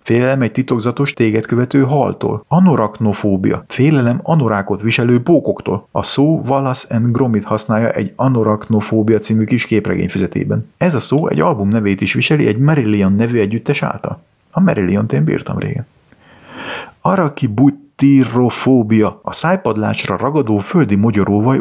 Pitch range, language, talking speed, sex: 110-135 Hz, Hungarian, 135 wpm, male